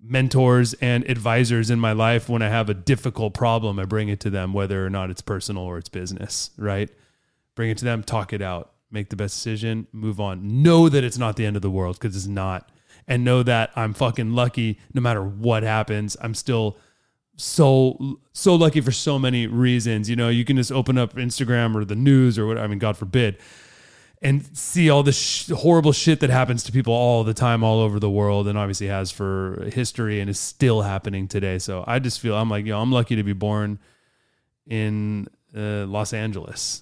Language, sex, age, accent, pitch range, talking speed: English, male, 30-49, American, 105-120 Hz, 215 wpm